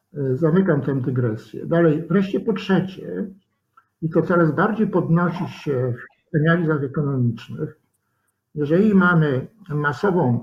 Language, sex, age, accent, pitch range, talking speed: Polish, male, 60-79, native, 130-170 Hz, 110 wpm